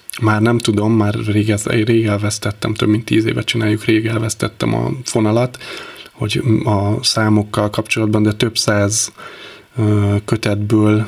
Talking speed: 130 wpm